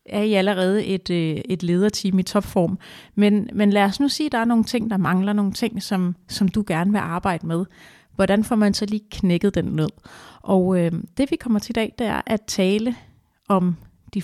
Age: 30-49